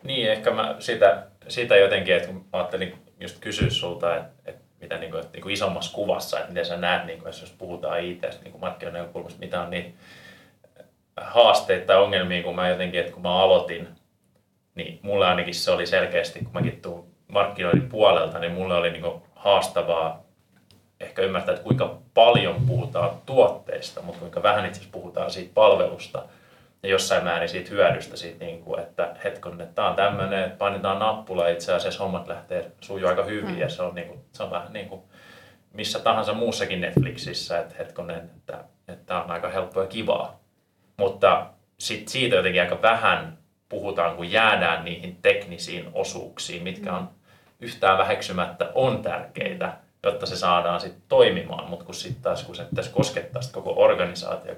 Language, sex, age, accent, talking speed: Finnish, male, 30-49, native, 175 wpm